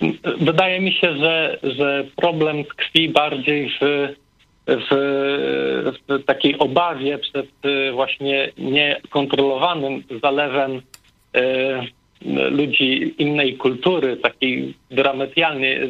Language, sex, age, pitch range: Polish, male, 50-69, 130-150 Hz